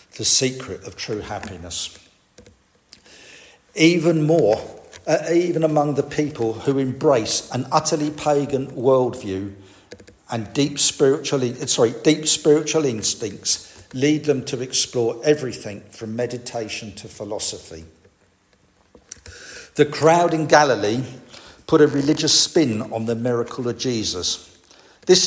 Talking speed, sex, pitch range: 115 wpm, male, 110-150 Hz